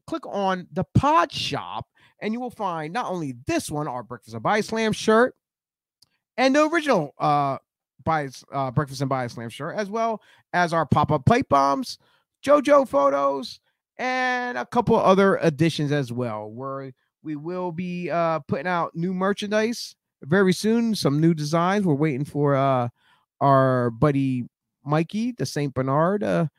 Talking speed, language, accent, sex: 165 wpm, English, American, male